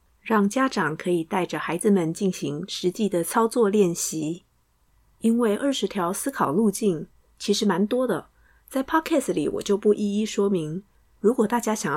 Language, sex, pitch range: Chinese, female, 160-215 Hz